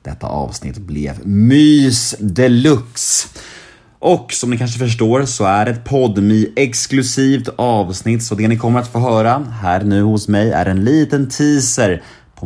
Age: 30-49